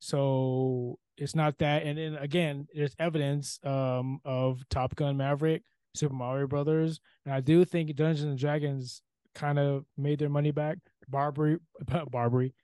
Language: English